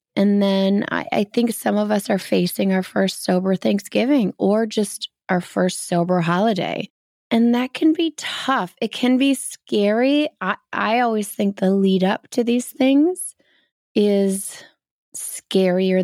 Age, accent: 20-39, American